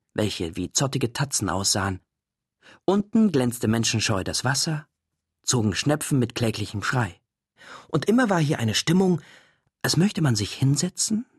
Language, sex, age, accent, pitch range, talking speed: German, male, 40-59, German, 115-160 Hz, 135 wpm